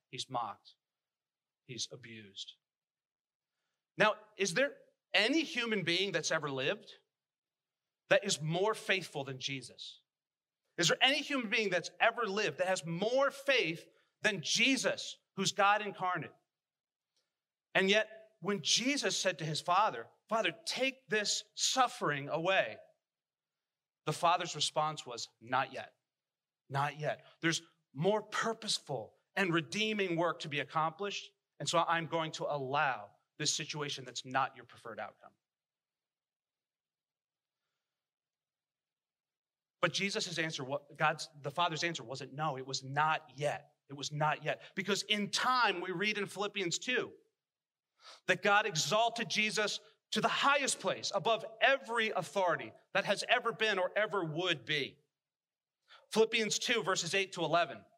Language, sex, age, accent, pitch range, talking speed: English, male, 40-59, American, 155-215 Hz, 130 wpm